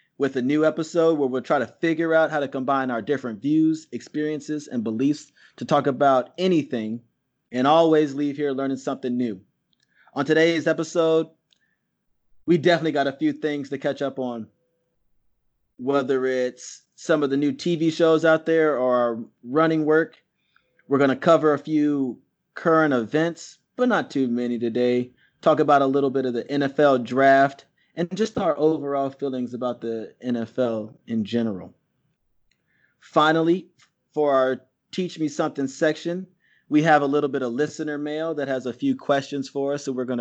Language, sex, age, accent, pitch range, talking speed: English, male, 30-49, American, 130-155 Hz, 170 wpm